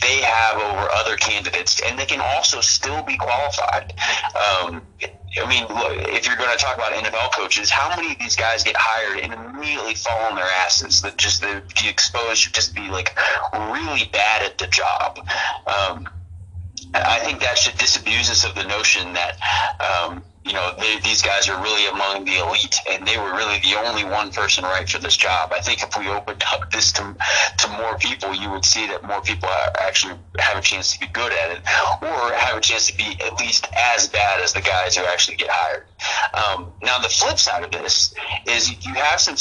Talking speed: 205 wpm